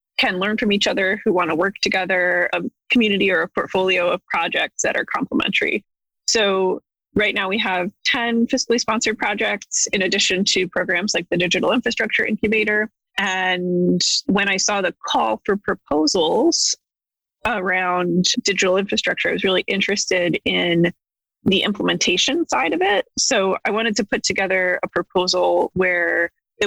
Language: English